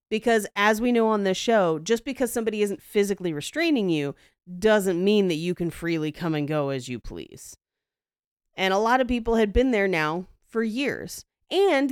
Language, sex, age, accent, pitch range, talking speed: English, female, 30-49, American, 165-220 Hz, 190 wpm